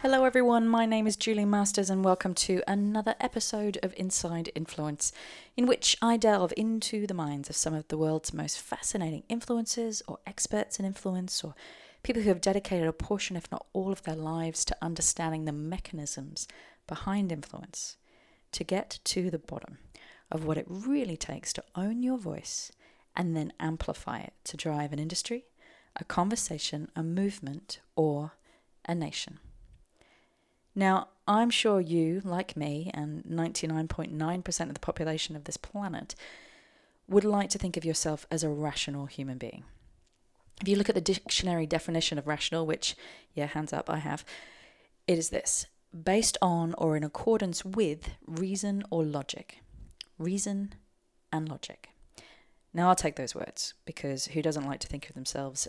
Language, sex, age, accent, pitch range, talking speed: English, female, 30-49, British, 155-205 Hz, 160 wpm